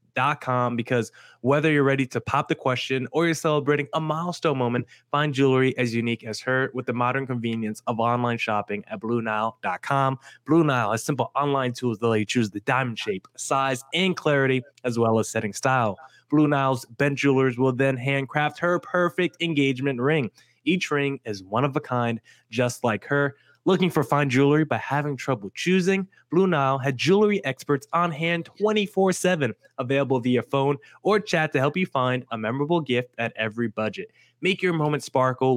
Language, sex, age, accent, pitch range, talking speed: English, male, 20-39, American, 120-155 Hz, 185 wpm